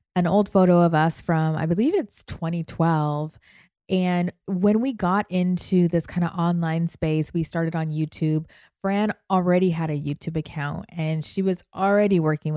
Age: 20-39